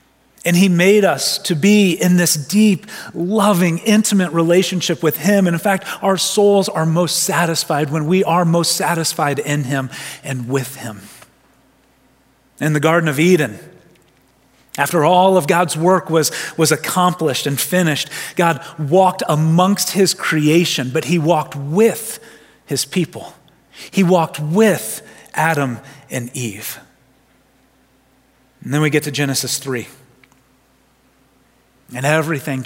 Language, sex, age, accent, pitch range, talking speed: English, male, 30-49, American, 135-170 Hz, 135 wpm